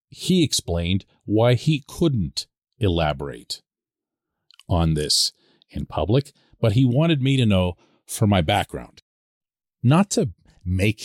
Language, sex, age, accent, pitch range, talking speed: English, male, 40-59, American, 105-160 Hz, 120 wpm